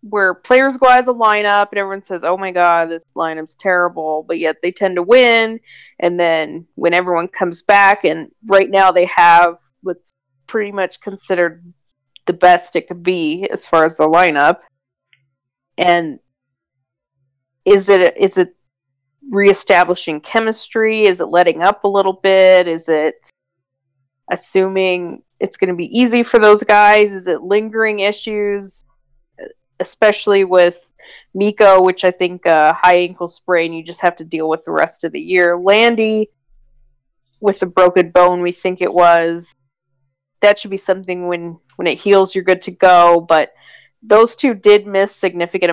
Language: English